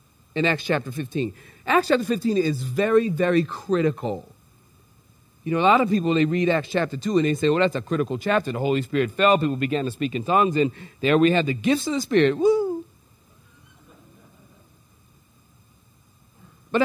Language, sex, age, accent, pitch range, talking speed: English, male, 40-59, American, 155-235 Hz, 180 wpm